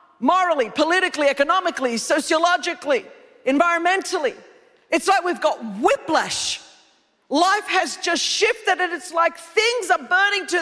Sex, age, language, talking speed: female, 40-59, English, 120 wpm